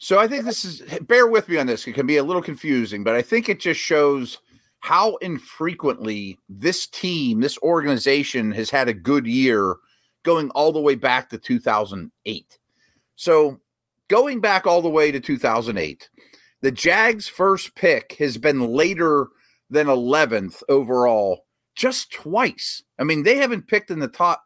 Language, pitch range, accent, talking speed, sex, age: English, 140-210 Hz, American, 165 wpm, male, 40-59